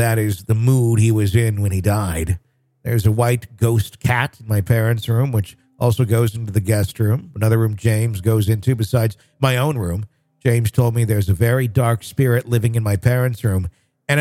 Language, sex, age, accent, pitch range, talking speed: English, male, 50-69, American, 105-130 Hz, 205 wpm